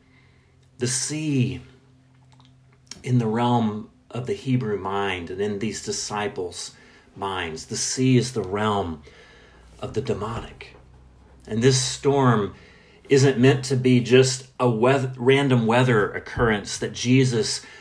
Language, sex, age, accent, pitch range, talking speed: English, male, 40-59, American, 110-135 Hz, 120 wpm